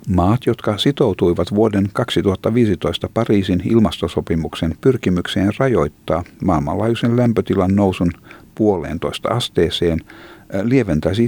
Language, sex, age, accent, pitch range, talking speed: Finnish, male, 50-69, native, 85-105 Hz, 80 wpm